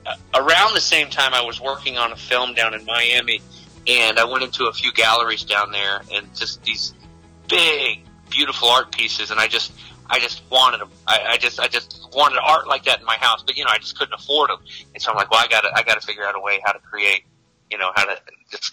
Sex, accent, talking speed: male, American, 250 wpm